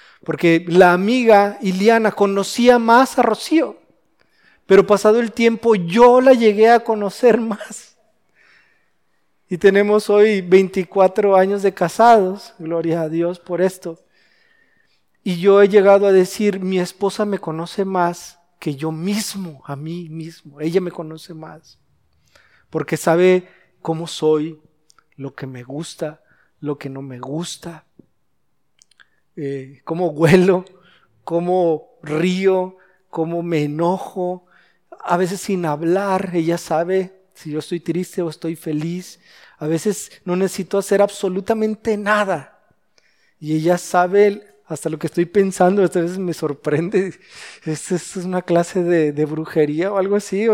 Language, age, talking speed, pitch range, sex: Spanish, 40-59, 135 wpm, 165-200 Hz, male